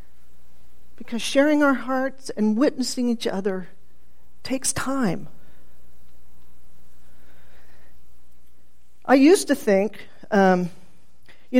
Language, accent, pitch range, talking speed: English, American, 175-255 Hz, 85 wpm